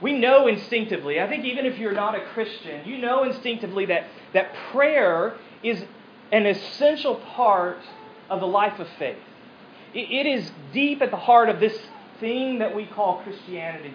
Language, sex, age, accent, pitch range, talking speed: English, male, 40-59, American, 210-260 Hz, 170 wpm